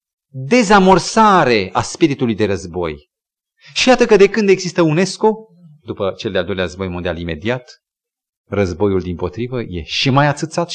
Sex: male